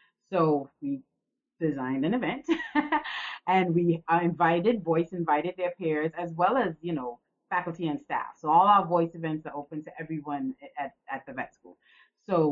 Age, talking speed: 30-49, 170 wpm